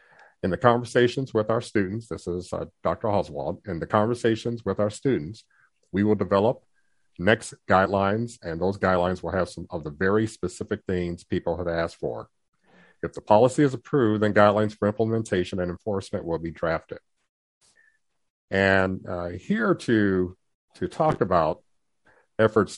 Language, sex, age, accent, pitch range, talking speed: English, male, 50-69, American, 90-115 Hz, 155 wpm